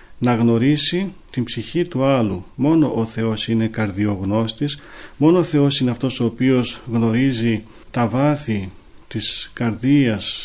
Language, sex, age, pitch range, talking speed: Greek, male, 40-59, 110-145 Hz, 130 wpm